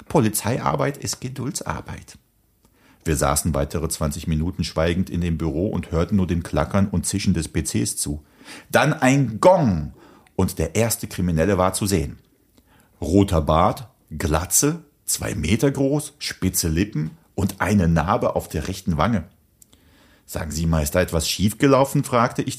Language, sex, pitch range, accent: German, male, 85-140 Hz, German